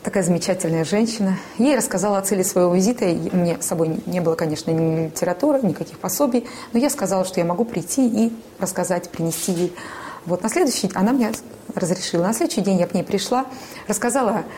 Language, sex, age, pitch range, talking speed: Russian, female, 20-39, 175-225 Hz, 195 wpm